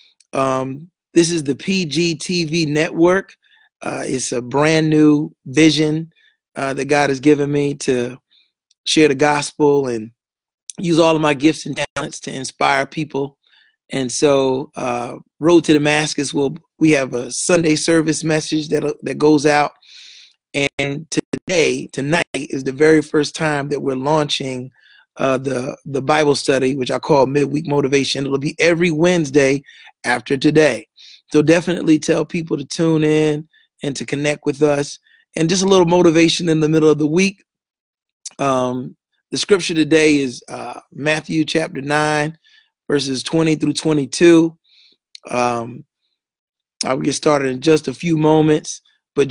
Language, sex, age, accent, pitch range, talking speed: English, male, 30-49, American, 140-160 Hz, 150 wpm